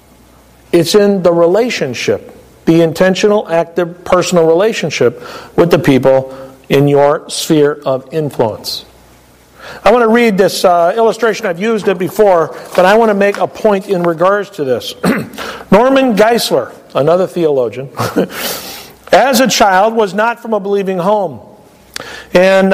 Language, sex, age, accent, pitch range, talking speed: English, male, 50-69, American, 175-220 Hz, 140 wpm